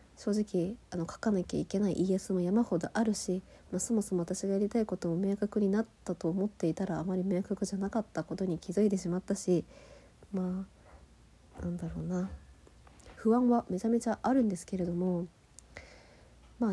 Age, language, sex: 40-59, Japanese, female